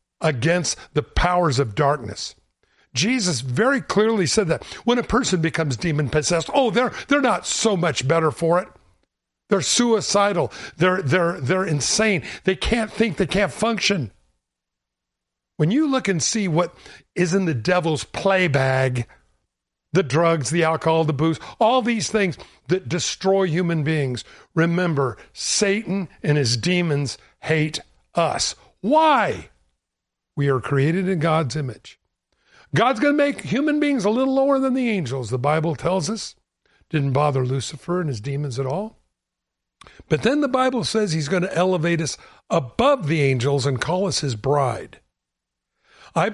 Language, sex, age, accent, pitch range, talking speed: English, male, 60-79, American, 145-200 Hz, 155 wpm